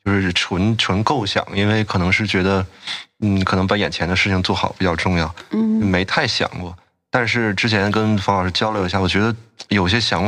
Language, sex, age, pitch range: Chinese, male, 20-39, 90-110 Hz